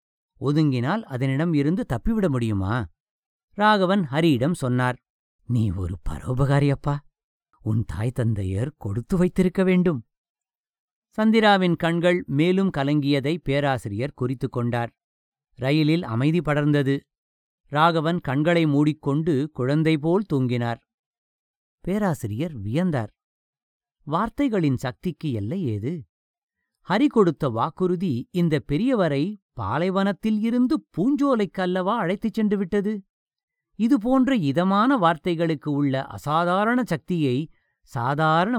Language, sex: English, male